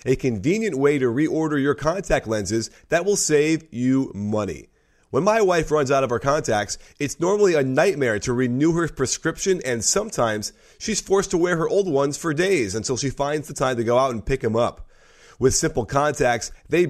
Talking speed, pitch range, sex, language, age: 200 wpm, 130-180 Hz, male, English, 30-49